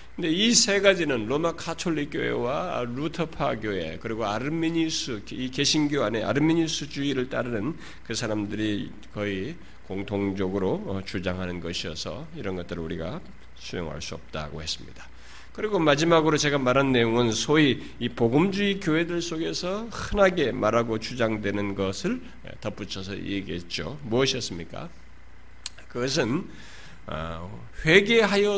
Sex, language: male, Korean